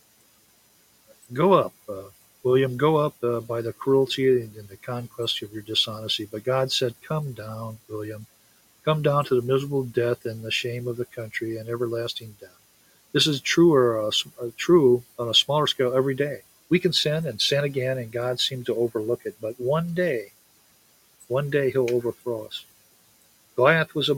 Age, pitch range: 50-69, 115-145 Hz